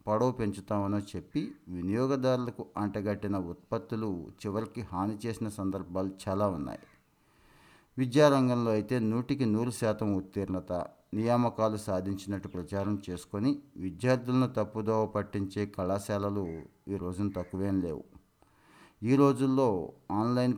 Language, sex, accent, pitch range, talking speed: Telugu, male, native, 95-115 Hz, 95 wpm